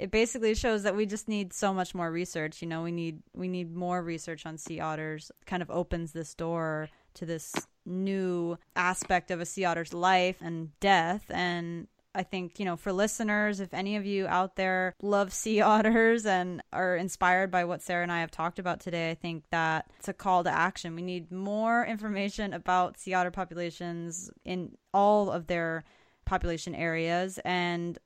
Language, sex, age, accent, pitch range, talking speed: English, female, 20-39, American, 175-205 Hz, 190 wpm